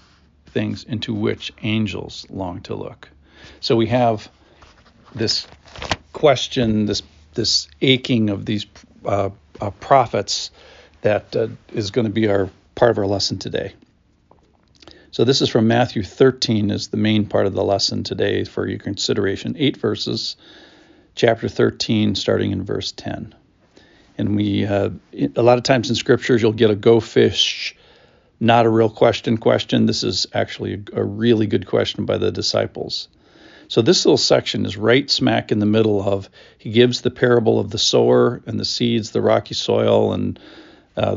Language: English